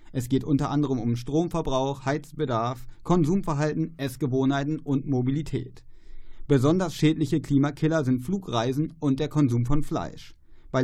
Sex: male